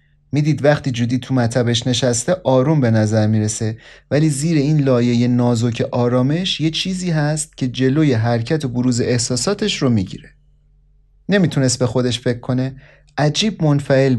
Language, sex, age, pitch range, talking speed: Persian, male, 30-49, 125-160 Hz, 150 wpm